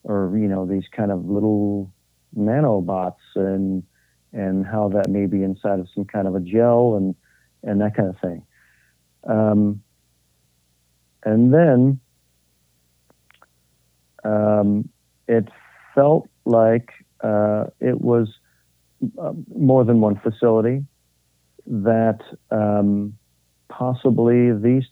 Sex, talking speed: male, 110 wpm